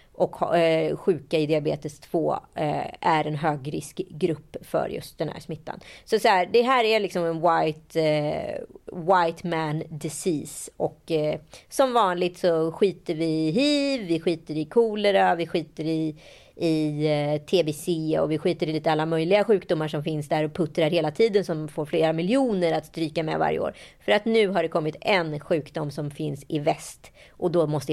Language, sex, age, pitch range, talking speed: Swedish, female, 30-49, 160-200 Hz, 175 wpm